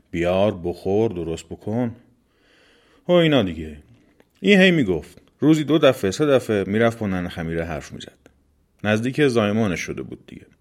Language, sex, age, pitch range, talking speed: Persian, male, 30-49, 95-120 Hz, 145 wpm